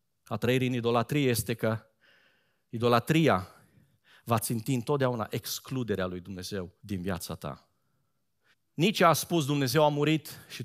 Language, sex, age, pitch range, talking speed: Romanian, male, 40-59, 140-205 Hz, 130 wpm